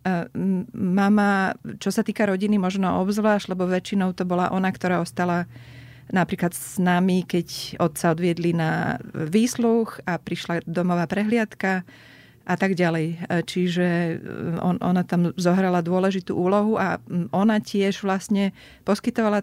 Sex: female